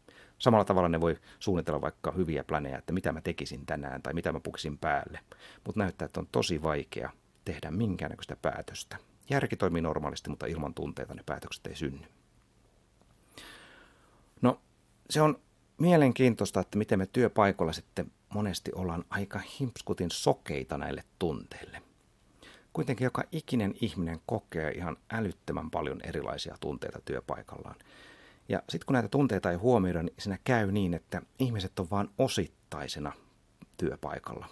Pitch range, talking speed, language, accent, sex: 75-105 Hz, 140 wpm, Finnish, native, male